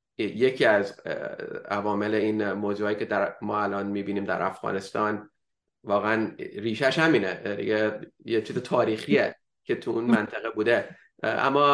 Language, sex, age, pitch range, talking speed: English, male, 30-49, 110-135 Hz, 130 wpm